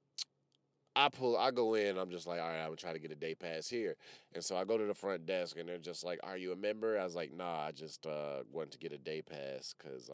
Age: 30-49